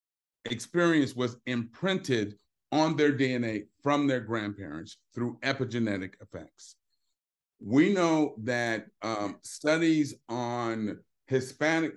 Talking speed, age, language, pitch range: 95 wpm, 40-59, English, 105-130 Hz